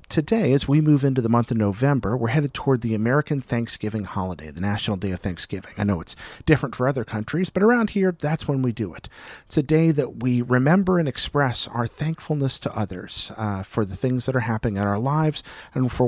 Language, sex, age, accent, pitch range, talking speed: English, male, 40-59, American, 110-155 Hz, 225 wpm